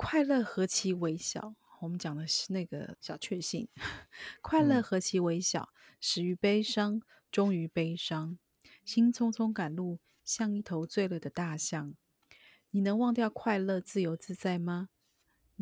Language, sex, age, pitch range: Chinese, female, 30-49, 170-215 Hz